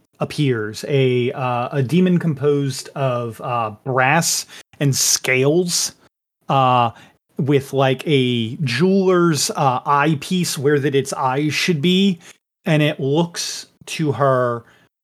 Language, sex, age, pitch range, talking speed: English, male, 30-49, 130-180 Hz, 115 wpm